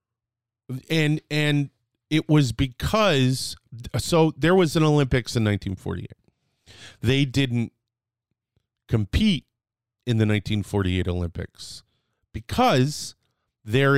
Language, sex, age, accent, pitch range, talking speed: English, male, 30-49, American, 105-135 Hz, 90 wpm